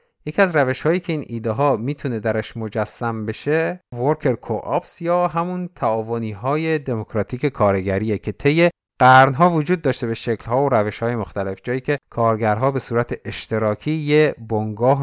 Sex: male